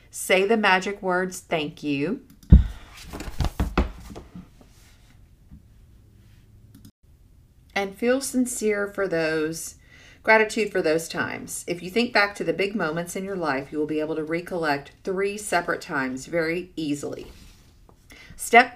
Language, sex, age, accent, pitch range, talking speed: English, female, 40-59, American, 145-195 Hz, 120 wpm